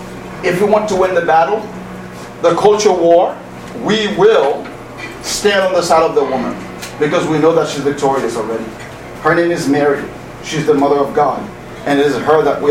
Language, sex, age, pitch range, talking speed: English, male, 40-59, 160-220 Hz, 195 wpm